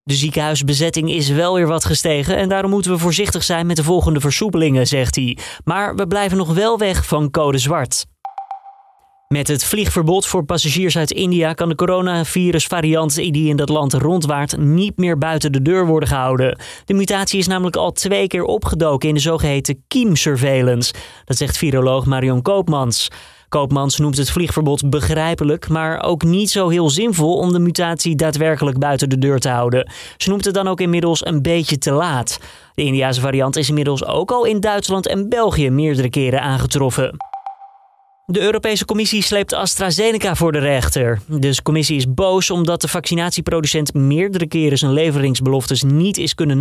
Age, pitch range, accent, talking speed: 20-39, 140-185 Hz, Dutch, 170 wpm